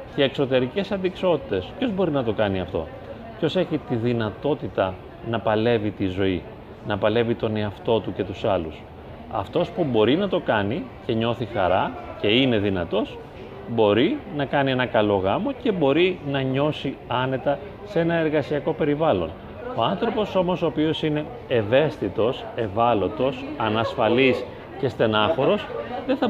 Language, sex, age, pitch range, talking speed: Greek, male, 30-49, 115-180 Hz, 145 wpm